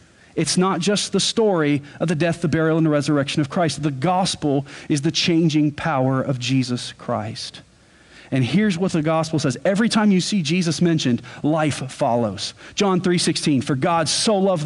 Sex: male